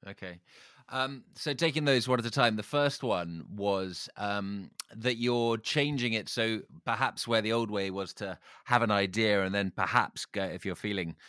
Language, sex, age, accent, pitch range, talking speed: English, male, 30-49, British, 95-115 Hz, 190 wpm